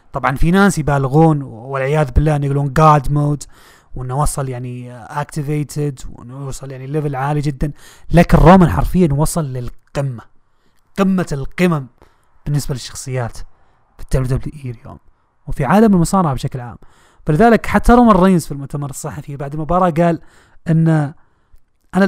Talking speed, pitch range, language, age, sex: 130 wpm, 130-160 Hz, Arabic, 30-49, male